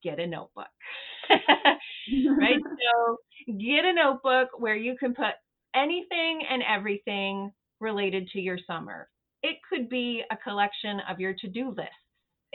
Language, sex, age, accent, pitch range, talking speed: English, female, 30-49, American, 200-255 Hz, 135 wpm